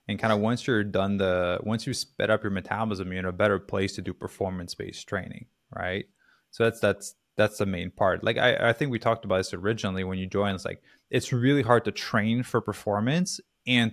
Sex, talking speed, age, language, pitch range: male, 230 wpm, 20-39, English, 100-115 Hz